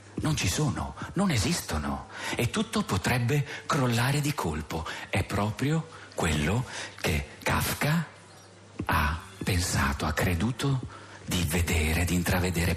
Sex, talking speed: male, 115 wpm